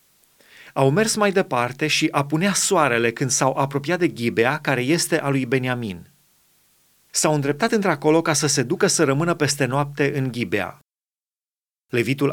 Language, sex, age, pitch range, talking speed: Romanian, male, 30-49, 130-165 Hz, 150 wpm